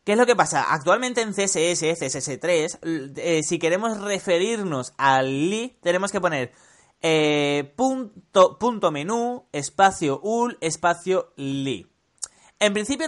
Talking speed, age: 130 wpm, 30-49